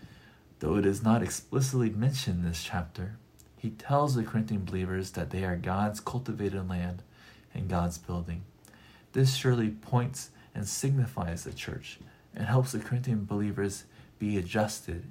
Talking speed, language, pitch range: 145 wpm, English, 95-120 Hz